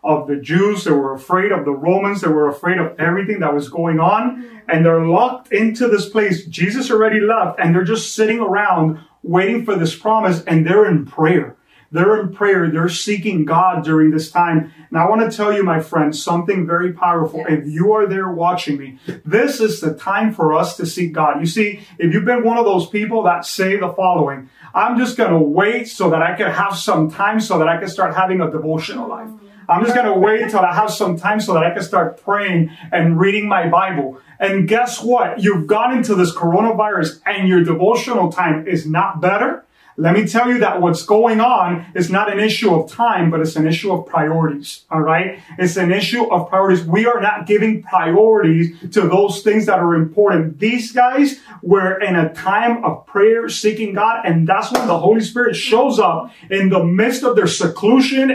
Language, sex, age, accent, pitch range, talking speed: English, male, 30-49, American, 165-215 Hz, 210 wpm